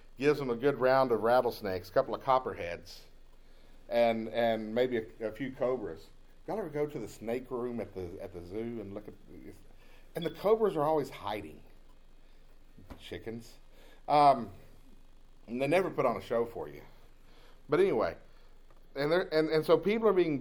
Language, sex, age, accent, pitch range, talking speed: English, male, 40-59, American, 125-160 Hz, 175 wpm